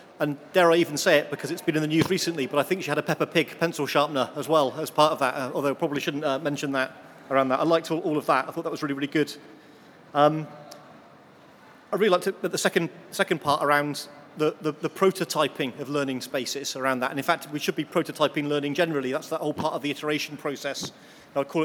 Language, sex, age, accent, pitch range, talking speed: English, male, 30-49, British, 145-165 Hz, 245 wpm